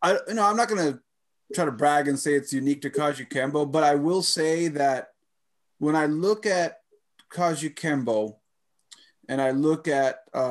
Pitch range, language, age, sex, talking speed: 135-170 Hz, English, 30-49, male, 190 wpm